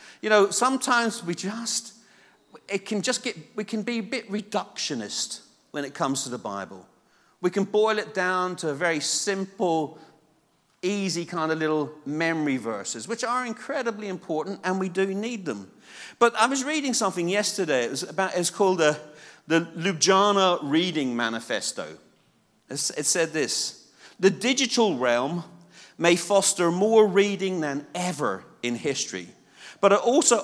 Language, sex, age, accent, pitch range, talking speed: English, male, 40-59, British, 155-210 Hz, 155 wpm